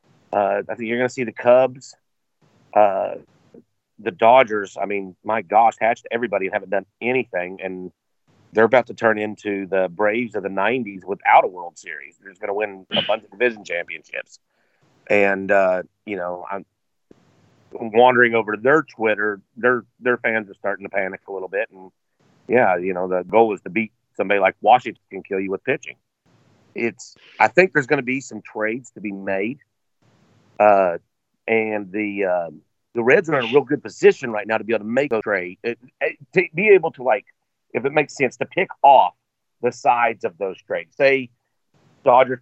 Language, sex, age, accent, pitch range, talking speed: English, male, 40-59, American, 100-125 Hz, 195 wpm